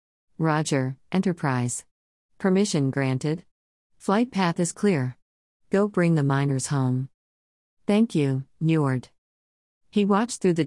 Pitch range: 130-175 Hz